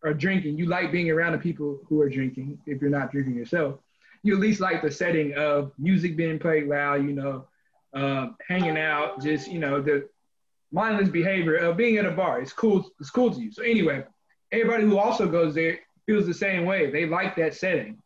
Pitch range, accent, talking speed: 150-200 Hz, American, 215 wpm